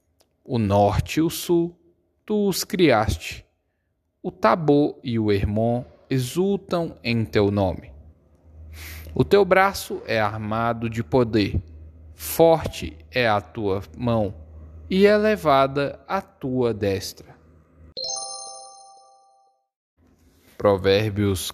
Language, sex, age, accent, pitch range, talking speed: Portuguese, male, 10-29, Brazilian, 95-130 Hz, 100 wpm